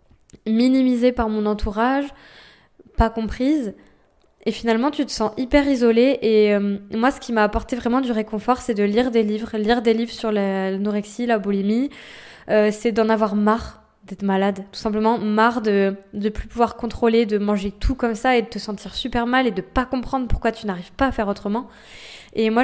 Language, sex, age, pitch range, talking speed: French, female, 20-39, 215-245 Hz, 200 wpm